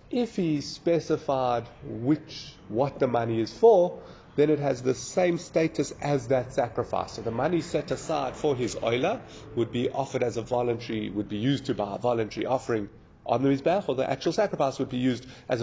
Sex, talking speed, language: male, 195 wpm, English